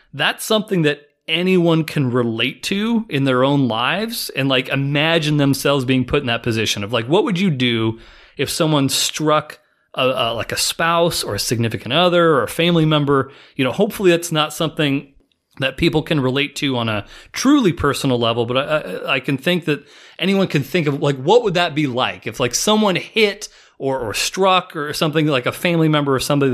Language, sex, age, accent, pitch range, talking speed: English, male, 30-49, American, 130-180 Hz, 195 wpm